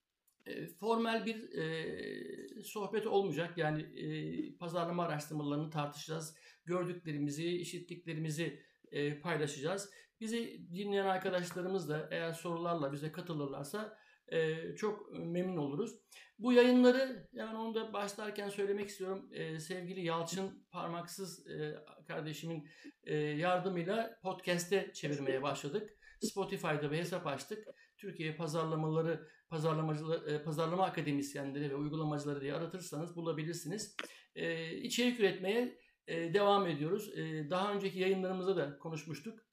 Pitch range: 155-200 Hz